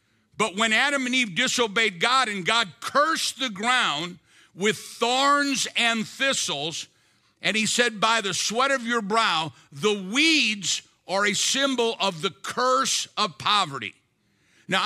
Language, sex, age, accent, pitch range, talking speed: English, male, 50-69, American, 180-235 Hz, 145 wpm